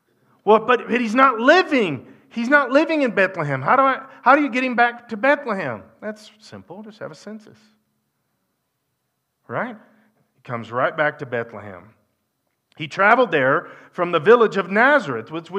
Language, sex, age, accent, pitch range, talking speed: English, male, 40-59, American, 135-220 Hz, 170 wpm